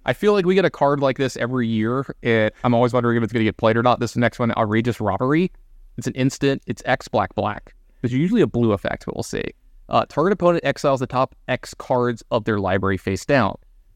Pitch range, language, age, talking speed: 105-135 Hz, English, 20-39, 240 wpm